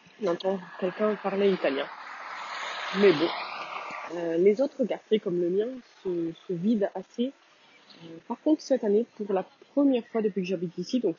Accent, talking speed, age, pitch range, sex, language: French, 165 wpm, 20-39, 185-235 Hz, female, French